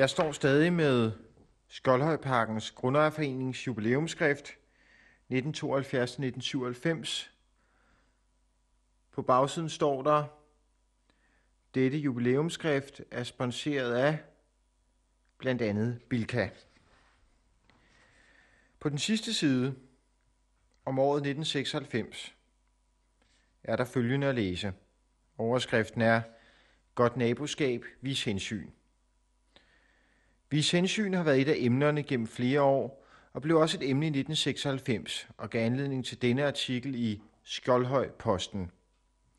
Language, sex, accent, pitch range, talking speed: Danish, male, native, 115-145 Hz, 95 wpm